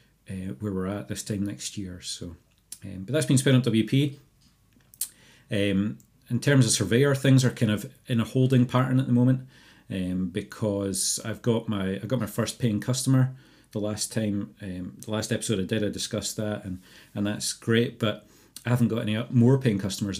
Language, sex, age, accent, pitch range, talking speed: English, male, 40-59, British, 100-120 Hz, 200 wpm